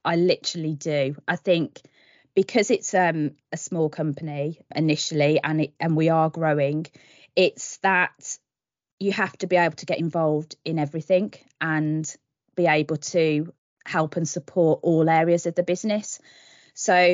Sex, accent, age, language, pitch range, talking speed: female, British, 20-39, English, 155-185 Hz, 150 wpm